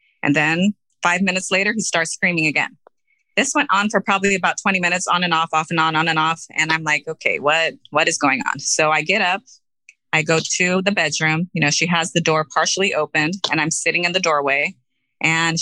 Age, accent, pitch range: 30-49, American, 160-195 Hz